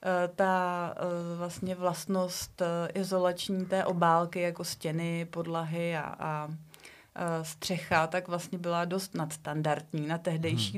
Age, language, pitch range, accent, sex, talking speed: 30-49, Czech, 165-190 Hz, native, female, 105 wpm